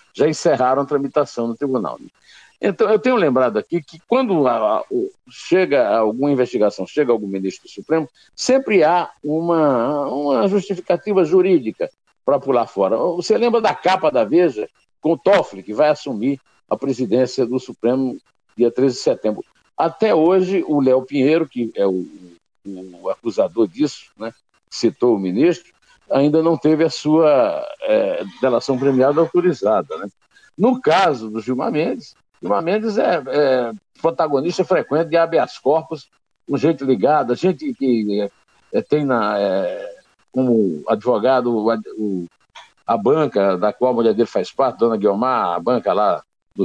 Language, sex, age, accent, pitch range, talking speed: Portuguese, male, 60-79, Brazilian, 120-180 Hz, 155 wpm